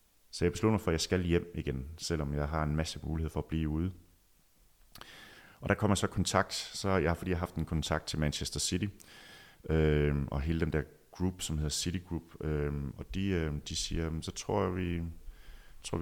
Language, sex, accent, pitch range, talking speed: Danish, male, native, 70-85 Hz, 210 wpm